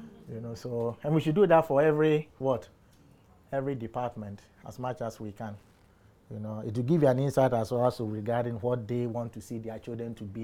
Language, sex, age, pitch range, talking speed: English, male, 30-49, 110-135 Hz, 225 wpm